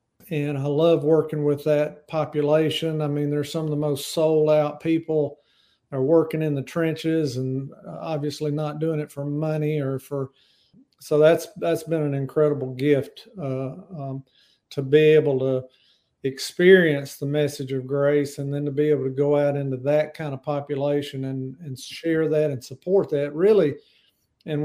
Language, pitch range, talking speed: English, 140-155 Hz, 175 wpm